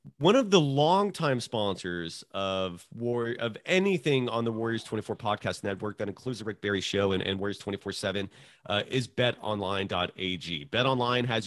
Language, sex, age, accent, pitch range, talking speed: English, male, 30-49, American, 105-140 Hz, 170 wpm